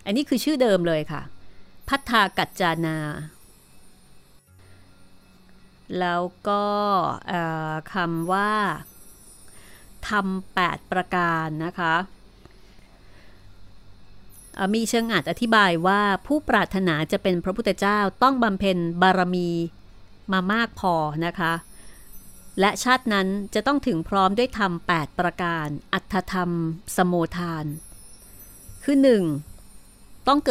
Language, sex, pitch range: Thai, female, 155-205 Hz